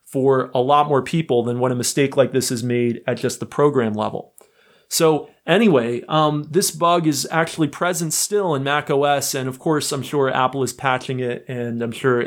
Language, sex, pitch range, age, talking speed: English, male, 130-160 Hz, 30-49, 200 wpm